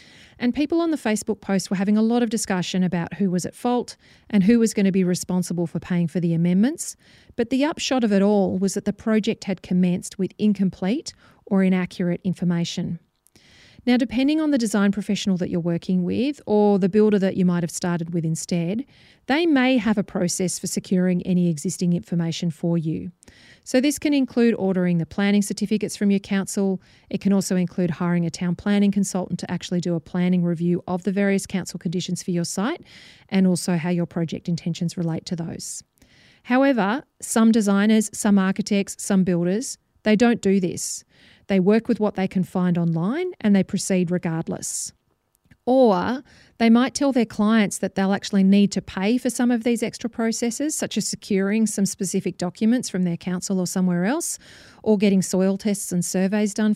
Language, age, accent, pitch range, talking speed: English, 40-59, Australian, 180-225 Hz, 190 wpm